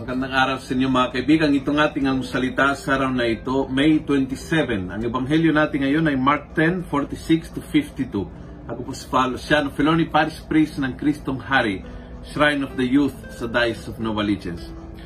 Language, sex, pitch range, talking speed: Filipino, male, 120-160 Hz, 185 wpm